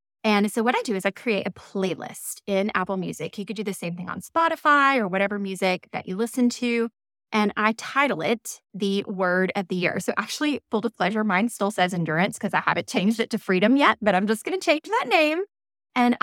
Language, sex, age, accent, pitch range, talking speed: English, female, 20-39, American, 175-220 Hz, 235 wpm